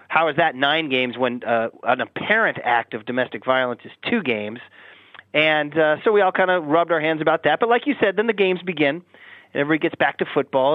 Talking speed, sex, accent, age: 230 wpm, male, American, 30-49